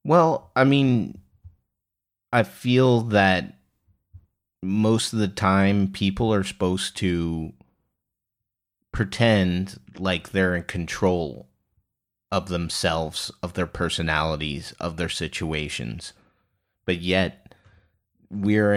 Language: English